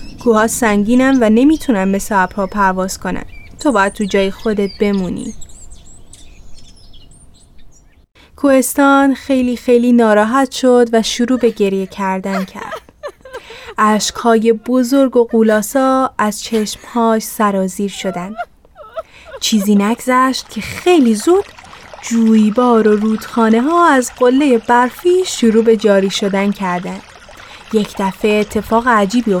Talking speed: 110 wpm